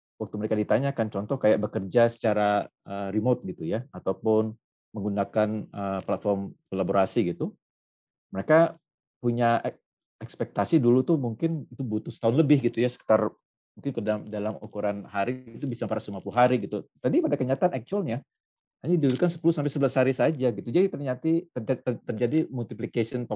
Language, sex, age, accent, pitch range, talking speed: English, male, 40-59, Indonesian, 105-135 Hz, 135 wpm